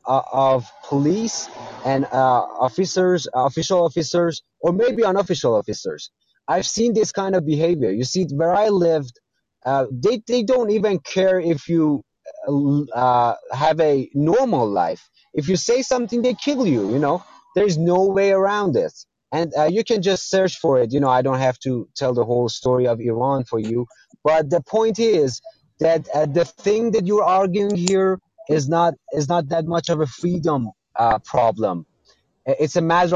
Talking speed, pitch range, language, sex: 175 wpm, 135-180 Hz, English, male